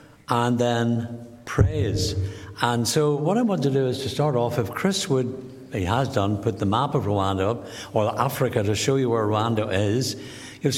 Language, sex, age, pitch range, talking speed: English, male, 60-79, 110-135 Hz, 195 wpm